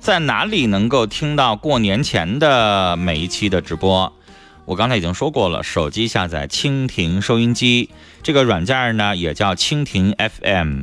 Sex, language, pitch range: male, Chinese, 90-125 Hz